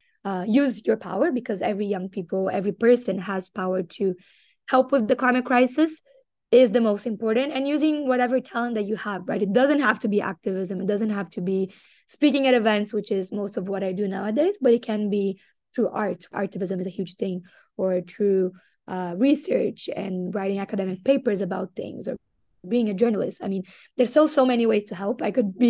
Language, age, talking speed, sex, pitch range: English, 20-39, 210 wpm, female, 200-240 Hz